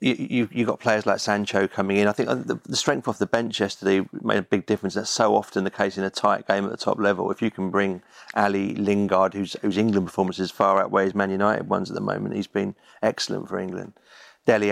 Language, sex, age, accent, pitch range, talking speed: English, male, 30-49, British, 100-110 Hz, 240 wpm